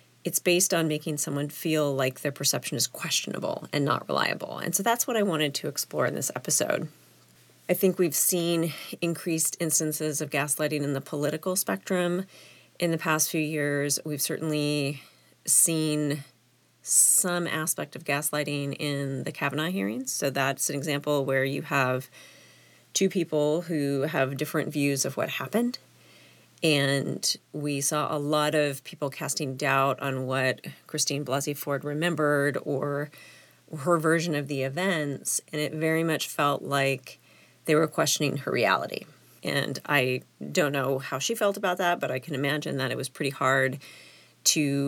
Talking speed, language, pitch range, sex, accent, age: 160 wpm, English, 140-160 Hz, female, American, 30-49